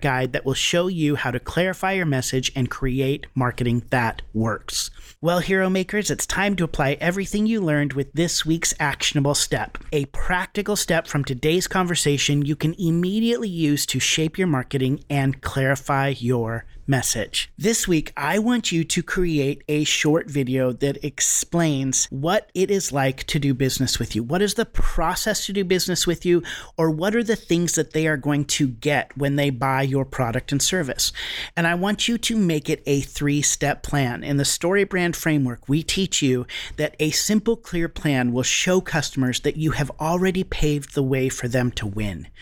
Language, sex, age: English, male, 40-59